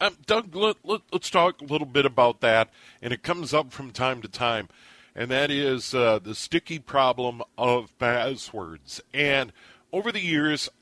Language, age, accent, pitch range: English, 50-69, American, 125-150 Hz